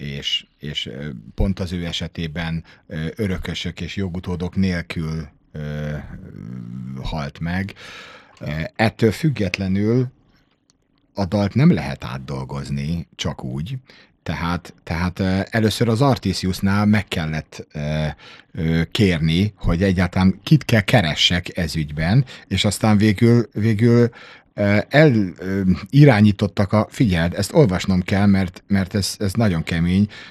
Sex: male